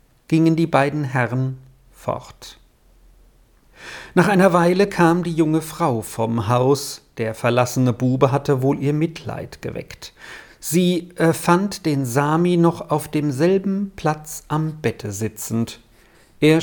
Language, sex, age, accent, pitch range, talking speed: German, male, 50-69, German, 120-165 Hz, 125 wpm